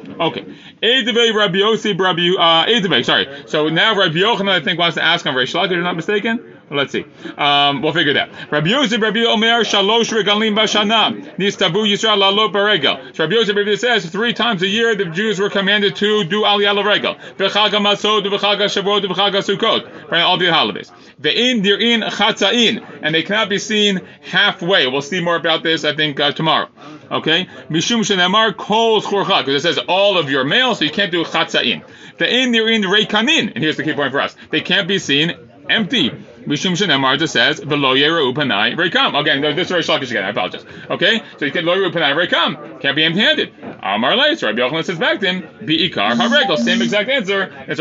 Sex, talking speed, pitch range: male, 185 wpm, 160-215 Hz